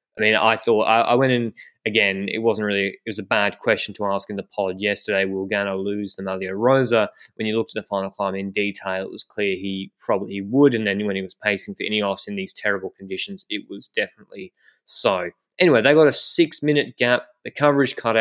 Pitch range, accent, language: 100-120 Hz, Australian, English